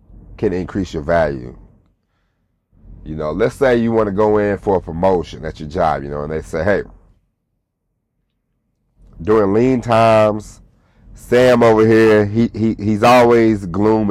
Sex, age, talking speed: male, 30-49, 155 wpm